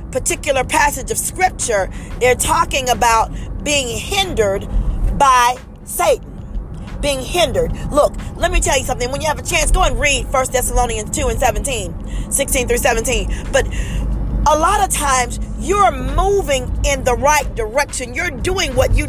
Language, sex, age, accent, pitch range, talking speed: English, female, 40-59, American, 260-370 Hz, 155 wpm